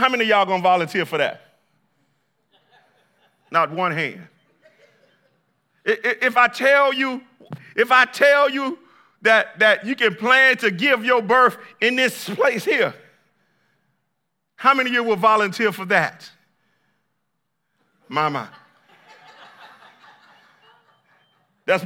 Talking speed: 120 wpm